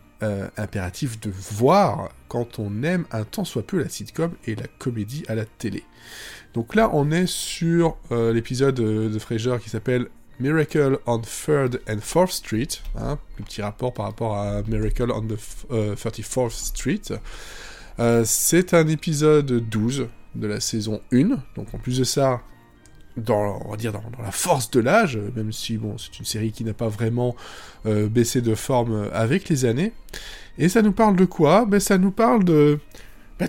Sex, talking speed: male, 195 wpm